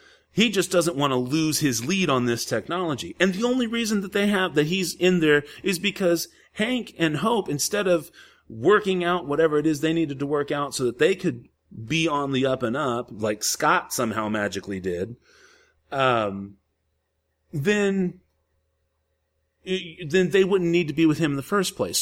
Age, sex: 30-49, male